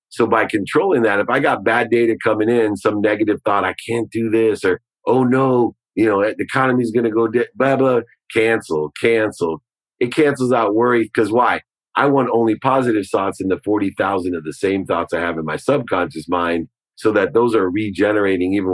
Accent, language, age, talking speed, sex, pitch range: American, English, 40-59, 200 wpm, male, 100-125 Hz